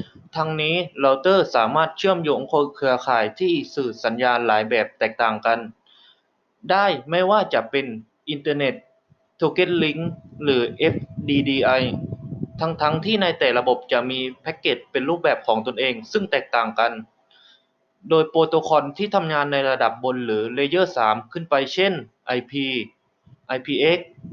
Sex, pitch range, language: male, 130-170 Hz, Thai